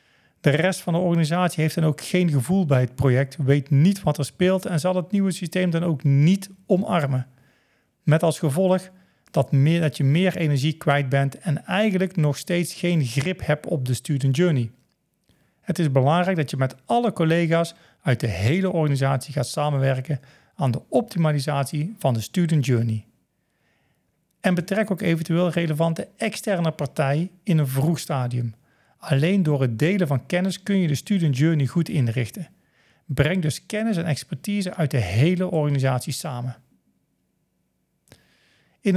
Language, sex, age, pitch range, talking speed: Dutch, male, 40-59, 135-180 Hz, 160 wpm